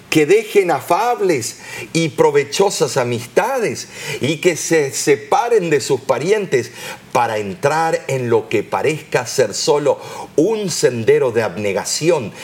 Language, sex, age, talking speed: Spanish, male, 50-69, 120 wpm